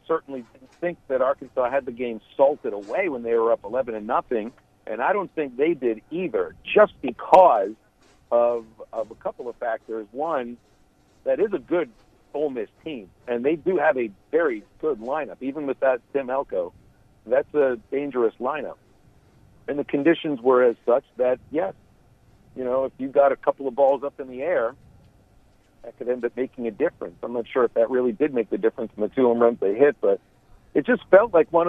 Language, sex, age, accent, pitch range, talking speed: English, male, 50-69, American, 120-155 Hz, 205 wpm